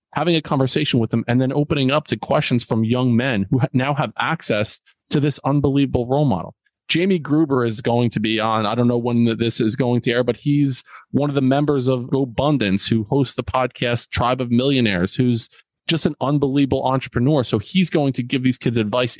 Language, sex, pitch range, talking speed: English, male, 115-140 Hz, 210 wpm